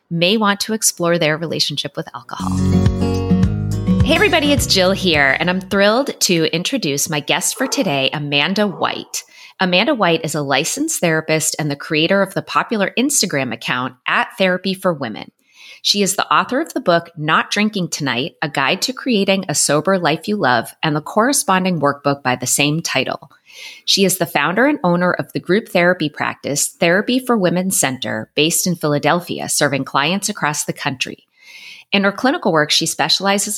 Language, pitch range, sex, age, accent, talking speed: English, 150-205 Hz, female, 30-49, American, 175 wpm